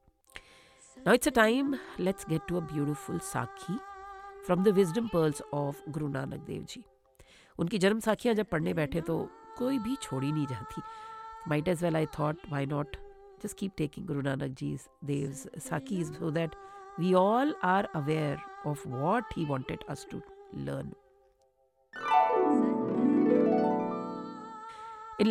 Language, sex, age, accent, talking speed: English, female, 50-69, Indian, 140 wpm